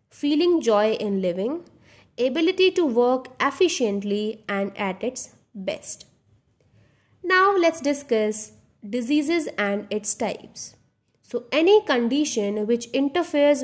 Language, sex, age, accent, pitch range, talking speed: English, female, 20-39, Indian, 205-285 Hz, 105 wpm